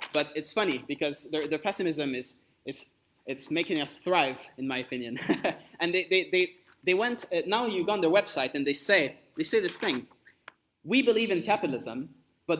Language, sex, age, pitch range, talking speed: English, male, 20-39, 140-185 Hz, 190 wpm